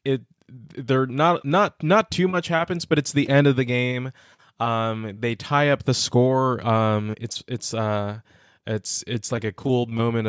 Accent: American